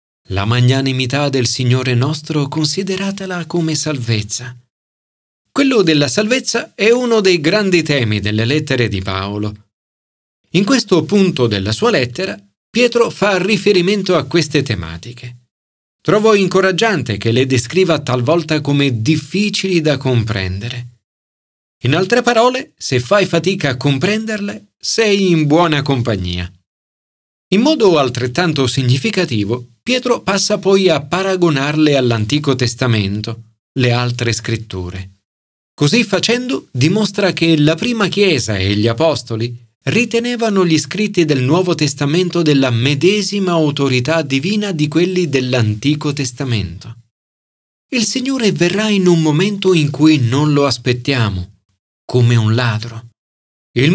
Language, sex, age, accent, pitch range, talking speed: Italian, male, 40-59, native, 120-190 Hz, 120 wpm